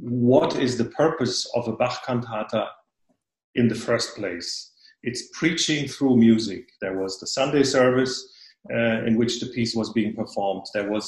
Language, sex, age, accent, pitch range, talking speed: Italian, male, 40-59, German, 115-140 Hz, 160 wpm